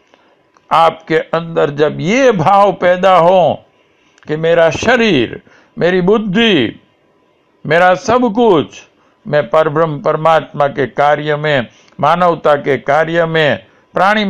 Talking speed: 110 wpm